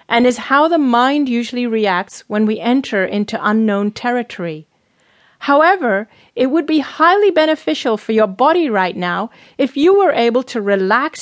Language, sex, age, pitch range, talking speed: English, female, 30-49, 205-270 Hz, 160 wpm